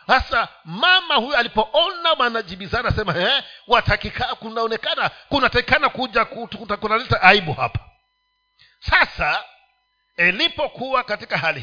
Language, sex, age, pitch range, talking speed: Swahili, male, 50-69, 220-320 Hz, 95 wpm